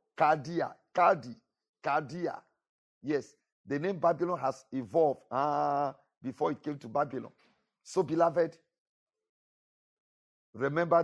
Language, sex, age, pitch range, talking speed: English, male, 50-69, 135-180 Hz, 100 wpm